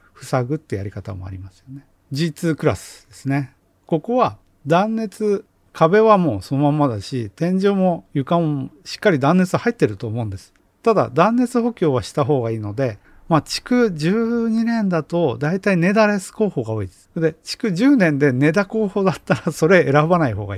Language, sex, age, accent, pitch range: Japanese, male, 40-59, native, 115-185 Hz